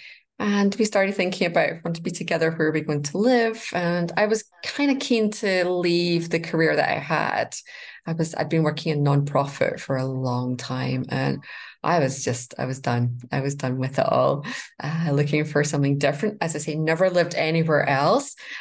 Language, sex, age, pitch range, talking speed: English, female, 20-39, 150-185 Hz, 215 wpm